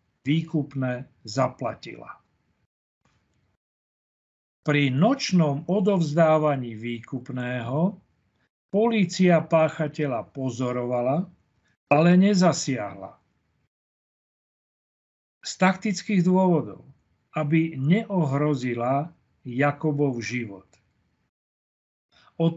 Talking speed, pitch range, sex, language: 50 wpm, 130-175 Hz, male, Slovak